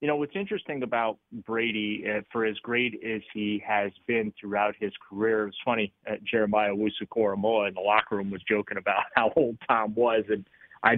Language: English